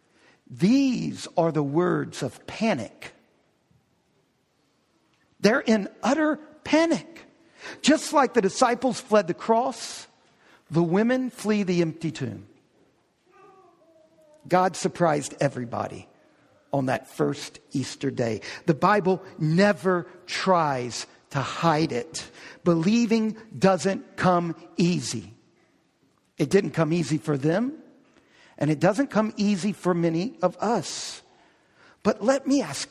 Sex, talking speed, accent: male, 110 wpm, American